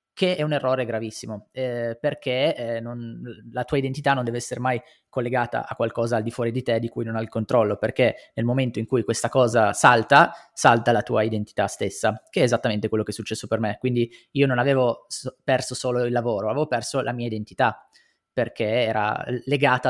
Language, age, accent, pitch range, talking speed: Italian, 20-39, native, 115-130 Hz, 205 wpm